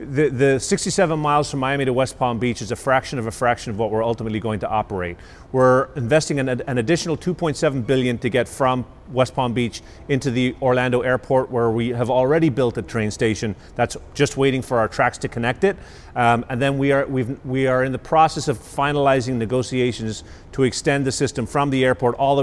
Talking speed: 210 wpm